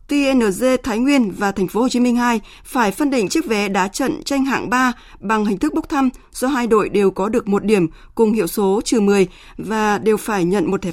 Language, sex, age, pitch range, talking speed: Vietnamese, female, 20-39, 190-255 Hz, 235 wpm